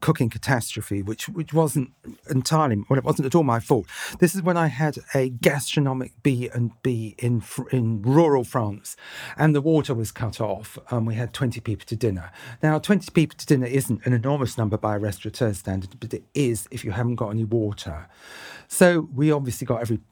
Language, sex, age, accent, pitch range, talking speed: English, male, 40-59, British, 110-145 Hz, 200 wpm